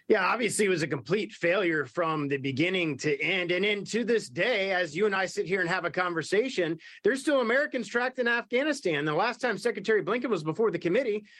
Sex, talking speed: male, 215 wpm